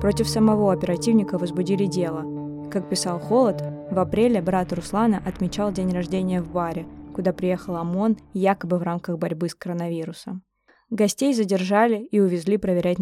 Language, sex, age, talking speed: Russian, female, 20-39, 145 wpm